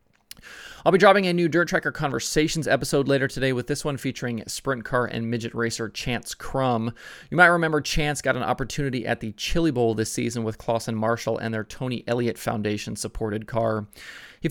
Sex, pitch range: male, 110-130 Hz